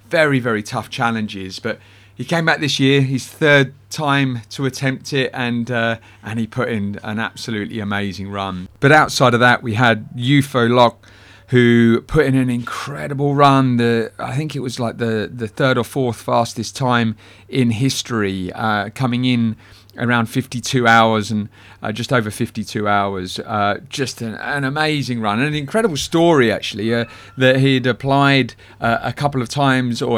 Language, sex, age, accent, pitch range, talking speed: English, male, 40-59, British, 110-135 Hz, 175 wpm